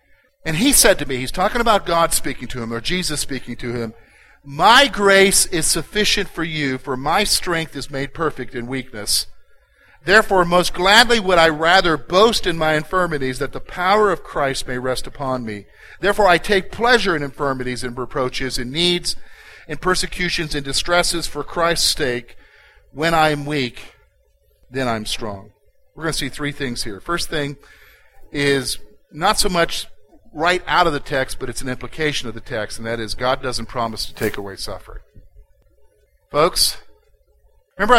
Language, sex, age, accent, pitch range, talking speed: English, male, 50-69, American, 130-180 Hz, 175 wpm